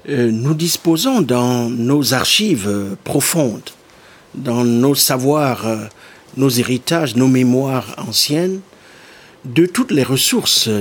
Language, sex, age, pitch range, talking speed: French, male, 60-79, 130-160 Hz, 115 wpm